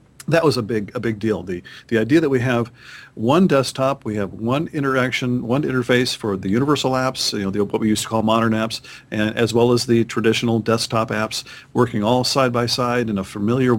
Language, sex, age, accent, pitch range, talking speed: English, male, 50-69, American, 105-130 Hz, 220 wpm